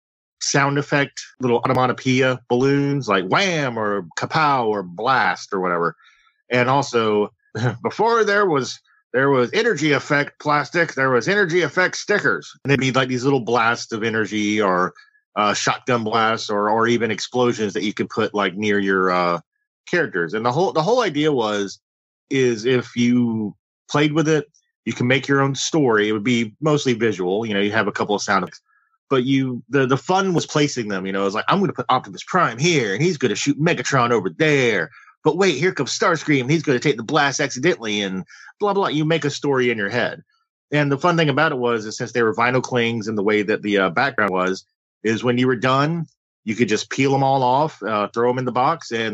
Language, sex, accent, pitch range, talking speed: English, male, American, 110-145 Hz, 220 wpm